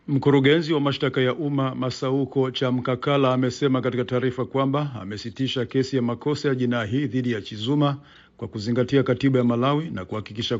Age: 50-69